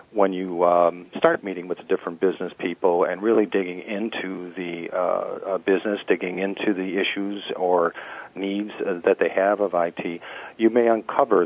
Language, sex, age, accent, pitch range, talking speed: English, male, 50-69, American, 90-110 Hz, 170 wpm